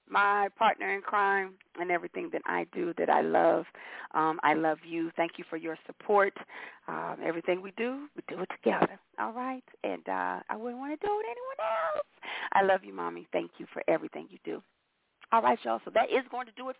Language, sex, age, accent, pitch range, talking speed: English, female, 40-59, American, 175-250 Hz, 220 wpm